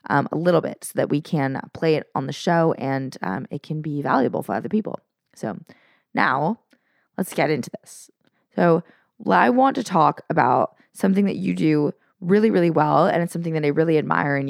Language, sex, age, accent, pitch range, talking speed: English, female, 20-39, American, 150-195 Hz, 205 wpm